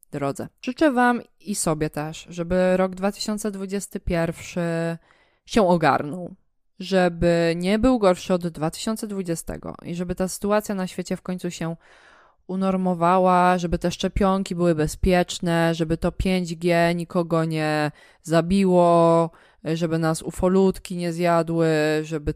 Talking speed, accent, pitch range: 120 wpm, native, 160-190 Hz